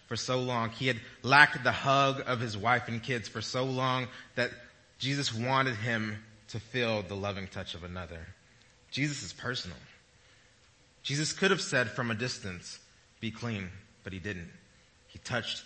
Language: English